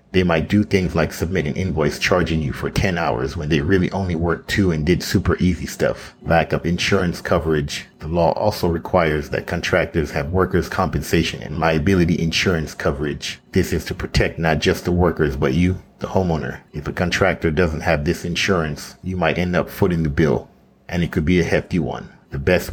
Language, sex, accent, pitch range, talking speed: English, male, American, 80-90 Hz, 200 wpm